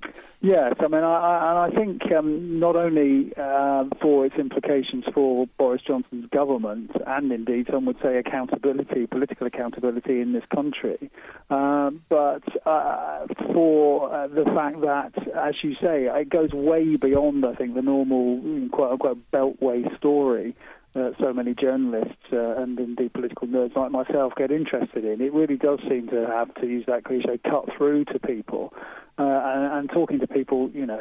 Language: English